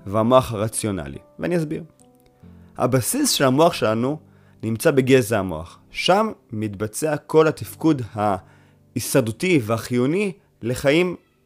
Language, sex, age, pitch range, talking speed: Hebrew, male, 30-49, 105-140 Hz, 95 wpm